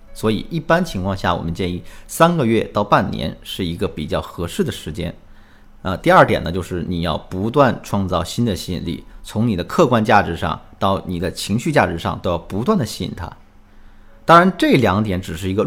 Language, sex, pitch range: Chinese, male, 95-135 Hz